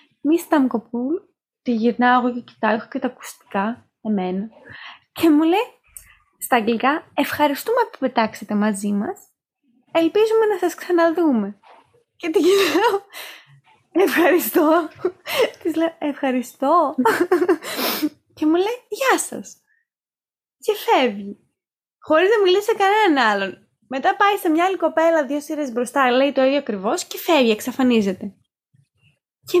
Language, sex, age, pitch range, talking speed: Greek, female, 20-39, 245-370 Hz, 125 wpm